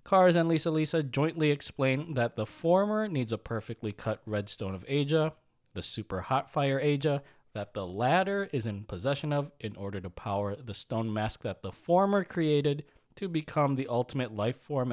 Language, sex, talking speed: English, male, 180 wpm